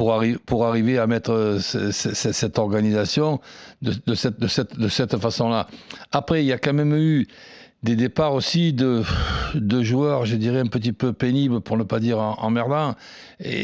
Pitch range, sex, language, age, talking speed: 115-145 Hz, male, French, 60-79, 195 wpm